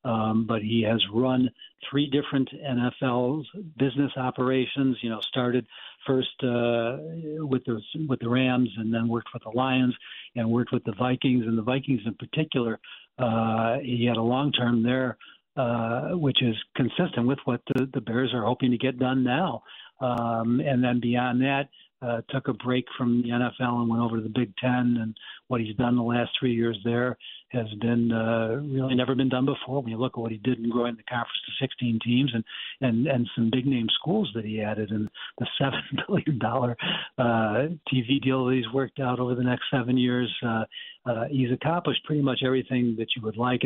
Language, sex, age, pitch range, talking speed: English, male, 60-79, 115-130 Hz, 195 wpm